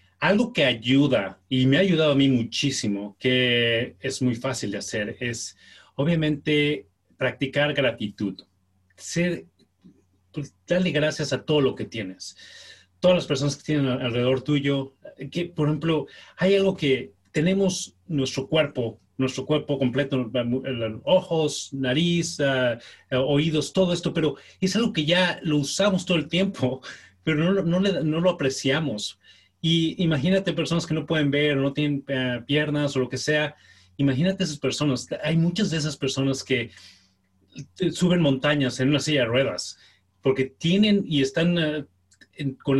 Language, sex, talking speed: Spanish, male, 150 wpm